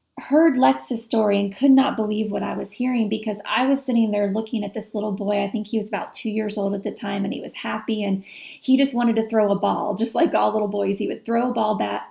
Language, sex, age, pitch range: English, female, 30-49, 200-235 Hz